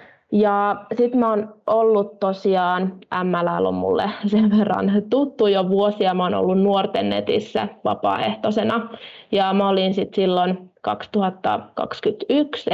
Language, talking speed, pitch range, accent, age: Finnish, 120 wpm, 185-220 Hz, native, 20-39